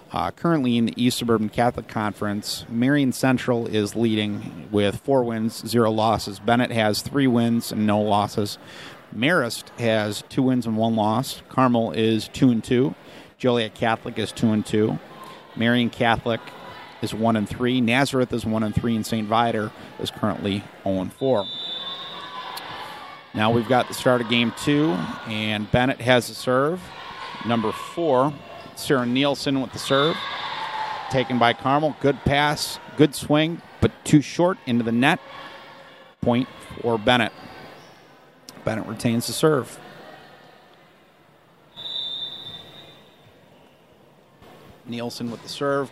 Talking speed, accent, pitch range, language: 135 wpm, American, 110-140 Hz, English